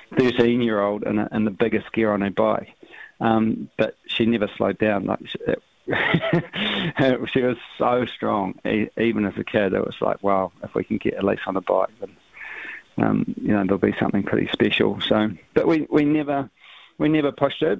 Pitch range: 105-125 Hz